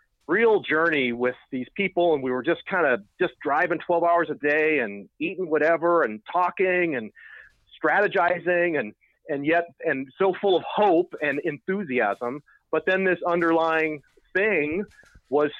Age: 40-59